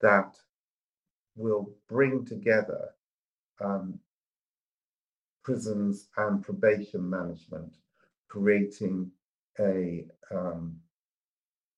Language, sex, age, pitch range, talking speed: English, male, 50-69, 90-115 Hz, 60 wpm